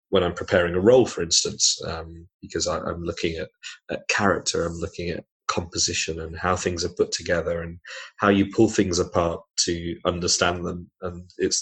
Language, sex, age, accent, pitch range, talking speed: English, male, 30-49, British, 90-115 Hz, 185 wpm